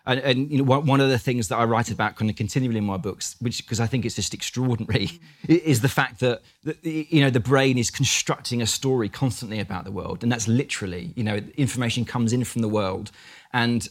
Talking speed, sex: 230 wpm, male